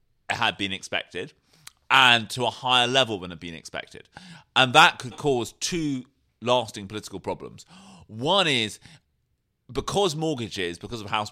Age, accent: 30-49, British